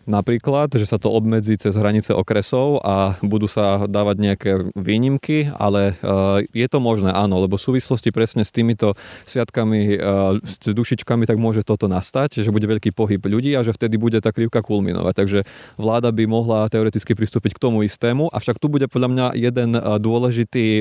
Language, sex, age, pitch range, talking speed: Slovak, male, 20-39, 105-120 Hz, 175 wpm